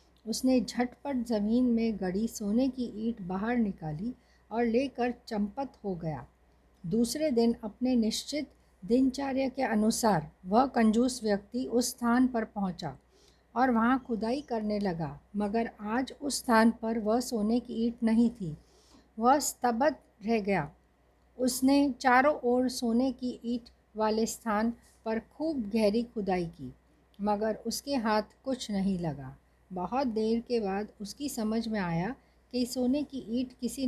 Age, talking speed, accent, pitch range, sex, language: 50-69, 145 wpm, native, 205-245 Hz, female, Hindi